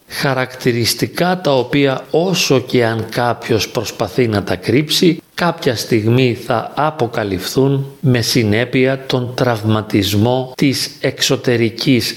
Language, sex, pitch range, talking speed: Greek, male, 110-135 Hz, 105 wpm